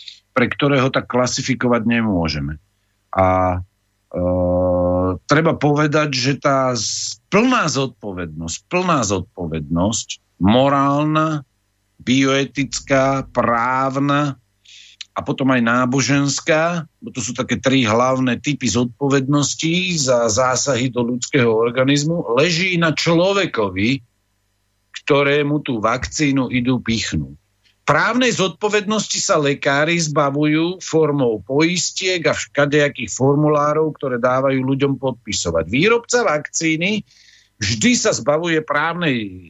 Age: 50-69